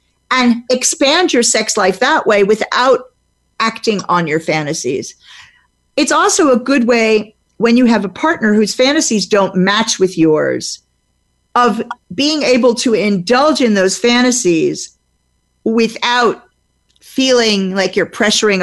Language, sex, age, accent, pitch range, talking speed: English, female, 50-69, American, 185-250 Hz, 130 wpm